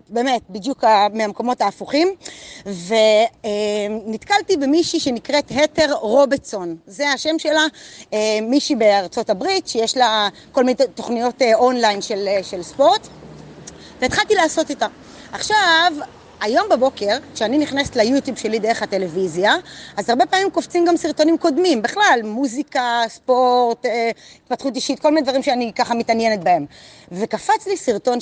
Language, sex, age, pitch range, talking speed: Hebrew, female, 30-49, 215-295 Hz, 135 wpm